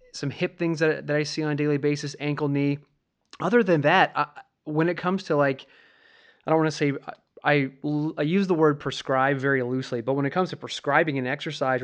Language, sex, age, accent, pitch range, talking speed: English, male, 20-39, American, 130-155 Hz, 215 wpm